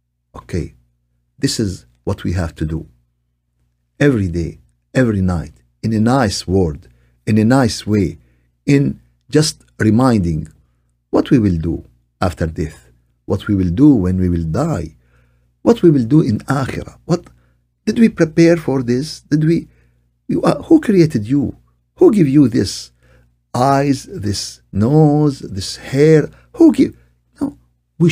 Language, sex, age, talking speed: Arabic, male, 50-69, 145 wpm